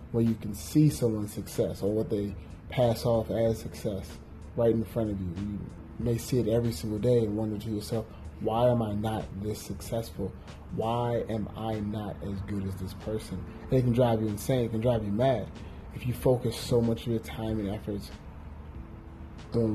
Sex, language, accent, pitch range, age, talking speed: male, English, American, 95-115 Hz, 30-49, 200 wpm